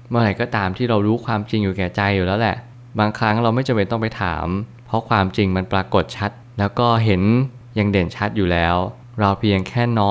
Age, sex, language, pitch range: 20-39, male, Thai, 100-120 Hz